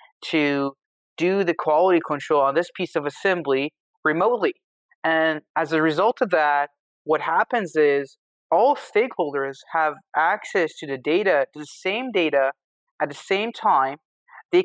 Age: 30-49